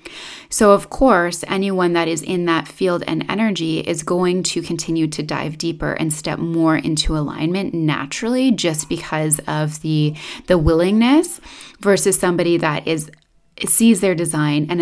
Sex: female